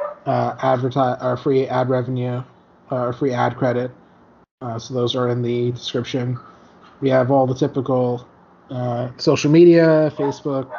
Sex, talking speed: male, 145 wpm